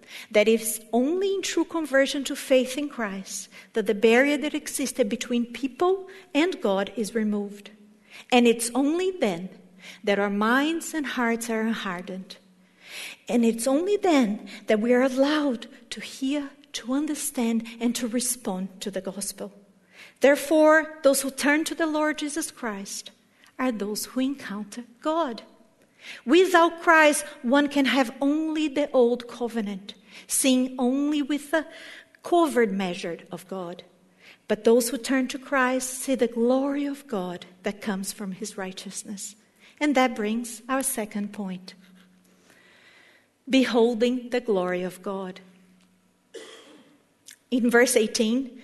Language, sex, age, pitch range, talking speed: English, female, 50-69, 210-285 Hz, 135 wpm